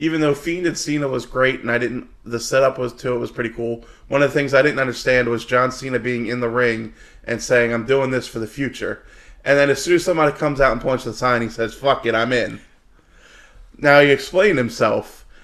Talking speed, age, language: 240 wpm, 20-39, English